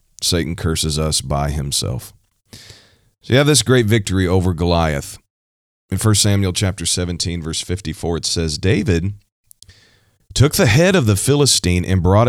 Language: English